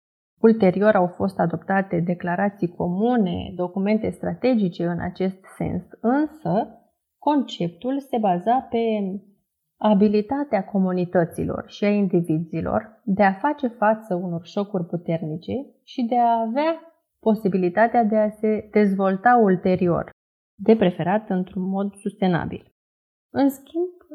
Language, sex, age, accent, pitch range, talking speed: Romanian, female, 30-49, native, 185-230 Hz, 110 wpm